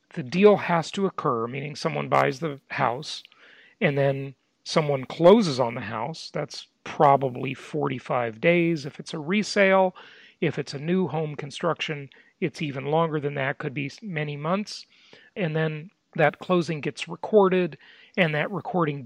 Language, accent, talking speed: English, American, 155 wpm